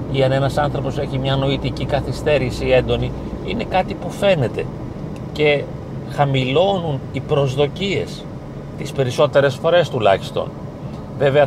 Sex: male